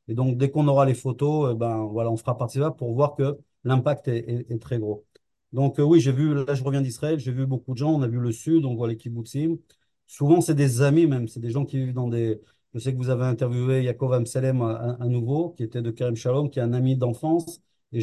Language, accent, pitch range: French, French, 120-140 Hz